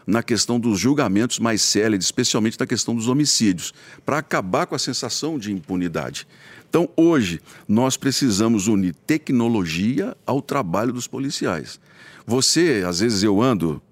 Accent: Brazilian